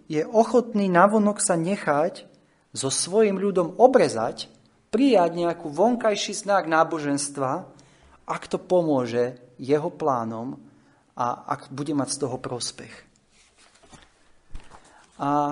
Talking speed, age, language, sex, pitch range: 105 wpm, 30-49, Slovak, male, 135-185 Hz